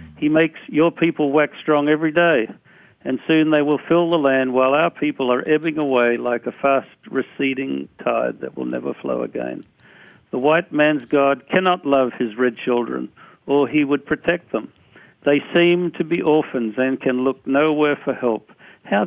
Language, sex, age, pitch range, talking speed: English, male, 60-79, 125-155 Hz, 180 wpm